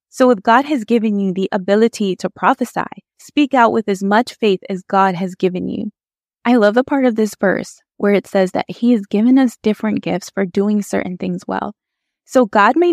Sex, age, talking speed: female, 20-39, 215 wpm